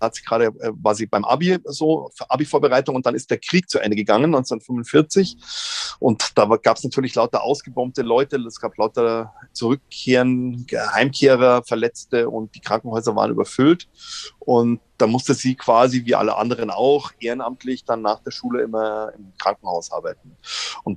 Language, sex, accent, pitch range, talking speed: German, male, German, 110-135 Hz, 165 wpm